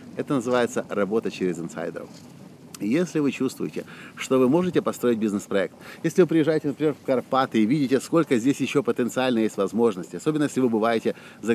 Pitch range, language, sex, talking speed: 110-160 Hz, Russian, male, 165 wpm